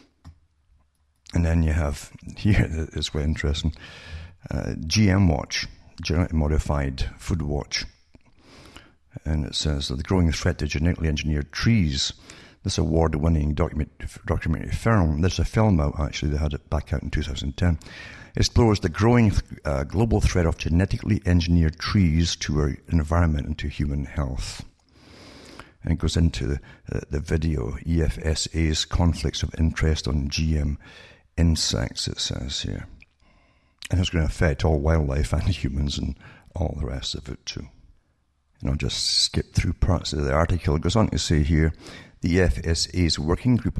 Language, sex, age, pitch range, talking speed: English, male, 60-79, 75-90 Hz, 155 wpm